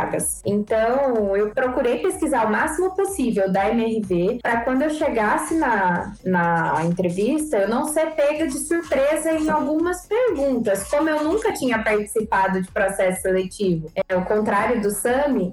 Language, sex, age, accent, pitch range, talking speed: Portuguese, female, 20-39, Brazilian, 215-285 Hz, 145 wpm